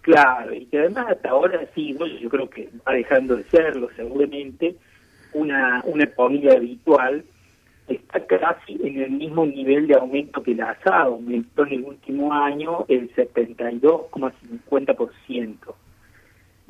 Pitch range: 125-150 Hz